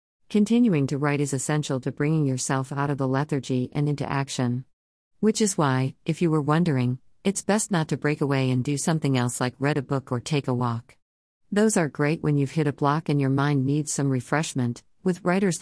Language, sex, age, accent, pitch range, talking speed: English, female, 50-69, American, 130-160 Hz, 215 wpm